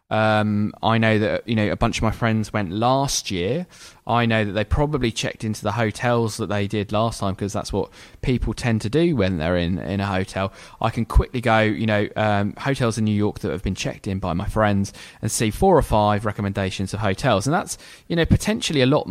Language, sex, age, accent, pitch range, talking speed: English, male, 20-39, British, 105-135 Hz, 235 wpm